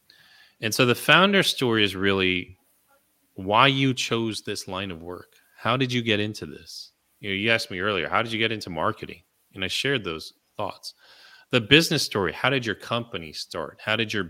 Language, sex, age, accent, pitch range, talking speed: English, male, 30-49, American, 95-115 Hz, 200 wpm